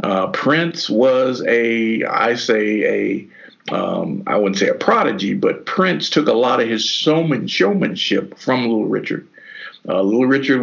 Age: 50-69